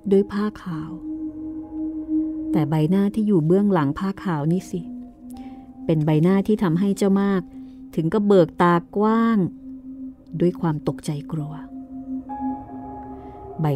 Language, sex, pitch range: Thai, female, 155-225 Hz